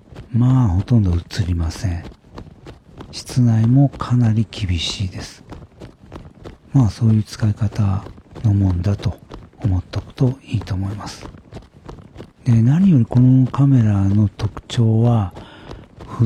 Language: Japanese